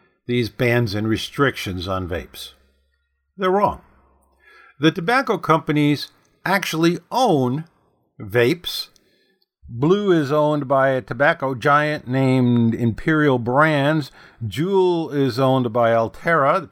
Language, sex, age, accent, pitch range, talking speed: English, male, 50-69, American, 110-165 Hz, 110 wpm